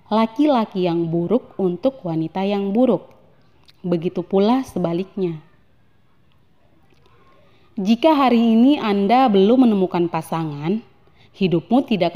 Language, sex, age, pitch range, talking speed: Indonesian, female, 30-49, 175-230 Hz, 95 wpm